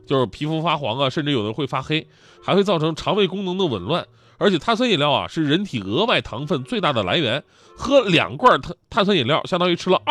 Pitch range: 125-185 Hz